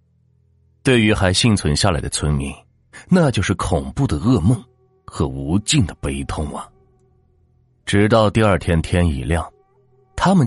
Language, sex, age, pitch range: Chinese, male, 30-49, 85-125 Hz